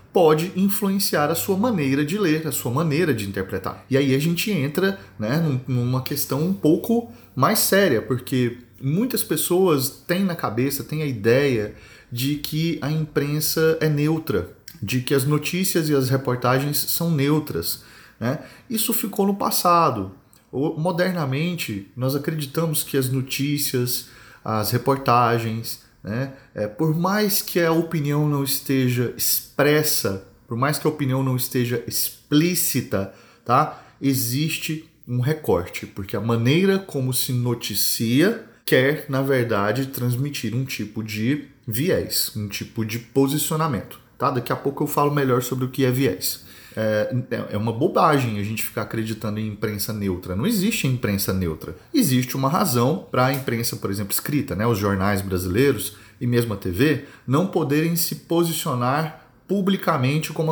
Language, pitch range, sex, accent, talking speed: Portuguese, 120-160 Hz, male, Brazilian, 145 wpm